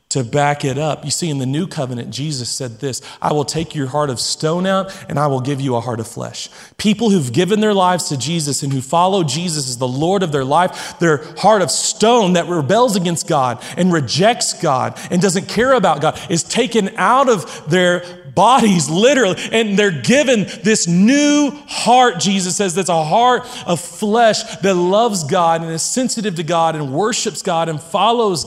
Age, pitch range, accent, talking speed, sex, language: 40-59, 145-210 Hz, American, 200 wpm, male, English